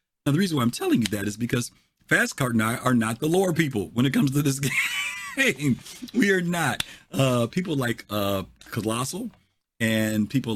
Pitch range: 110-140 Hz